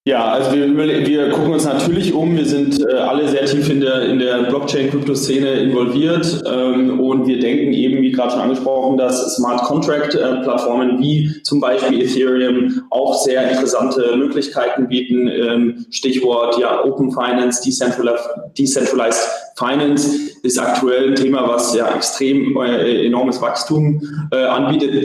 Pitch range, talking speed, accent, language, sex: 125-140 Hz, 150 wpm, German, German, male